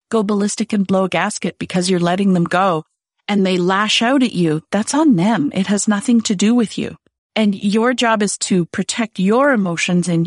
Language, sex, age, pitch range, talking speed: English, female, 40-59, 175-220 Hz, 210 wpm